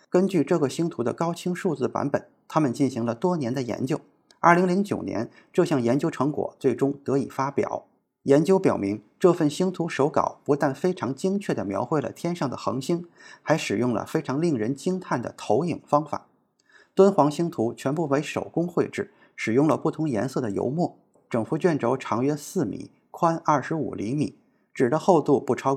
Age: 20-39